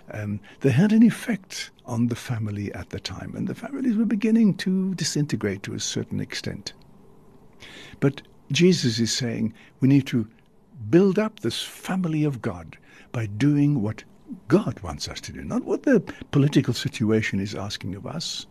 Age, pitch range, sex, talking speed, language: 60-79, 110-160 Hz, male, 170 wpm, English